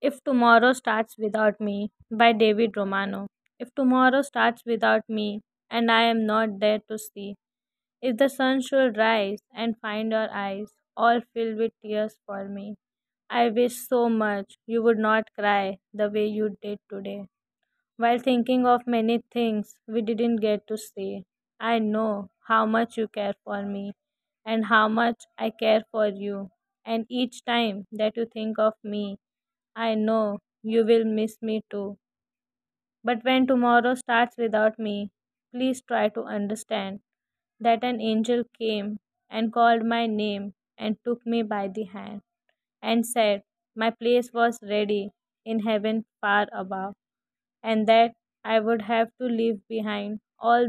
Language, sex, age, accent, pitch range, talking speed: English, female, 20-39, Indian, 210-235 Hz, 155 wpm